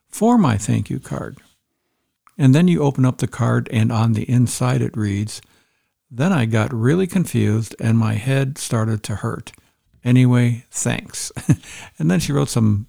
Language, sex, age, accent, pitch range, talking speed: English, male, 60-79, American, 115-140 Hz, 170 wpm